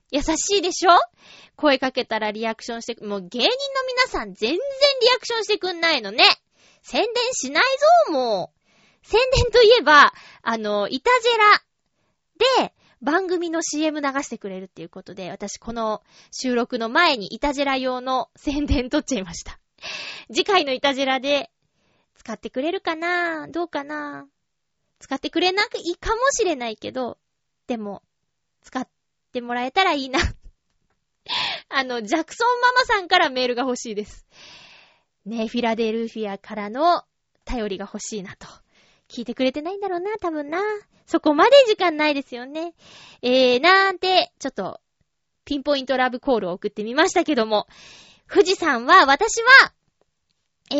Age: 20-39